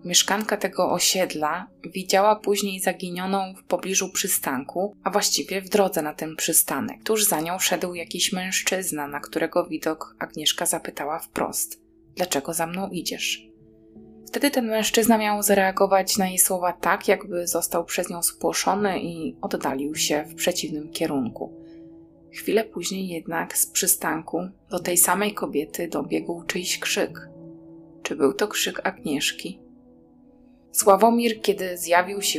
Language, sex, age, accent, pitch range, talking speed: Polish, female, 20-39, native, 160-195 Hz, 135 wpm